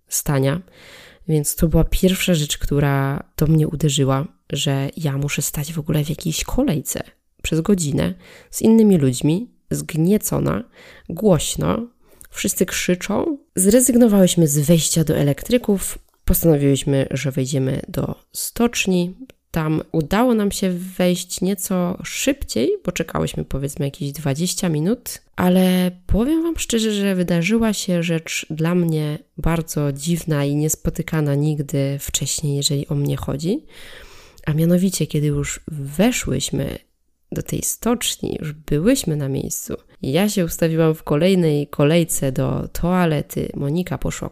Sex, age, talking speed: female, 20-39, 125 wpm